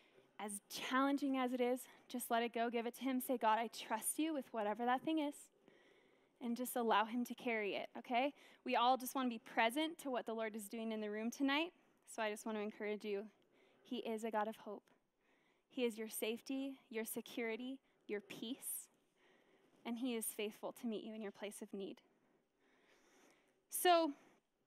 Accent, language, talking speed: American, English, 200 wpm